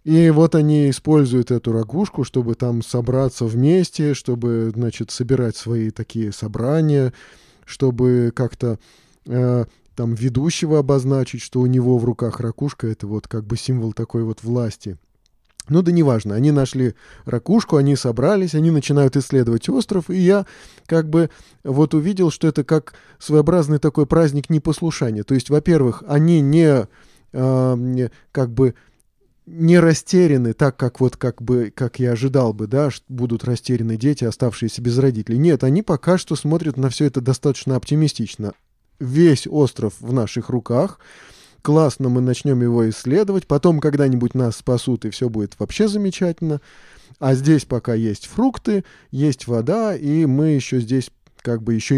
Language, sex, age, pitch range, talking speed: Russian, male, 20-39, 120-155 Hz, 150 wpm